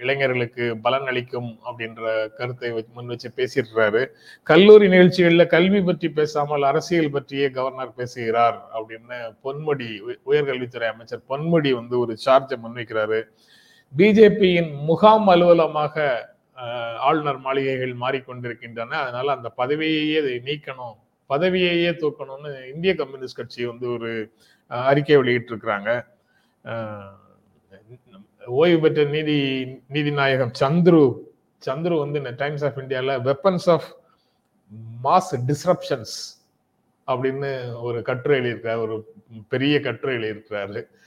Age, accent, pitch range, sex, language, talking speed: 30-49, native, 120-160 Hz, male, Tamil, 95 wpm